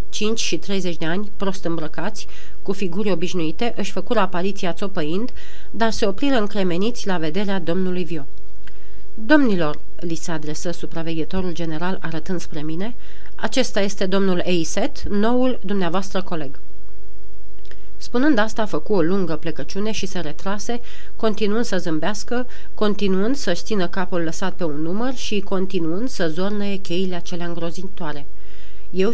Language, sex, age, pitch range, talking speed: Romanian, female, 40-59, 170-210 Hz, 135 wpm